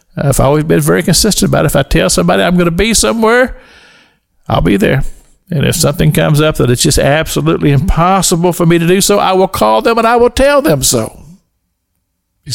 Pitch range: 105-170 Hz